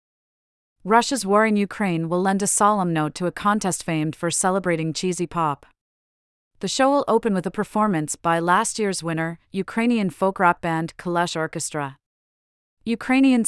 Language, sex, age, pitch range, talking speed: English, female, 40-59, 165-205 Hz, 150 wpm